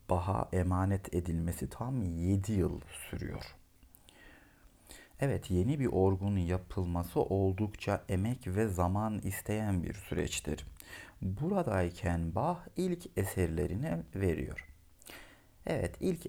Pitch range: 85-110 Hz